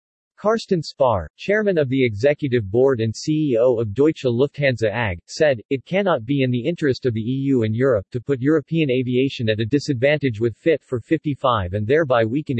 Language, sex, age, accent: English, male, 40-59, American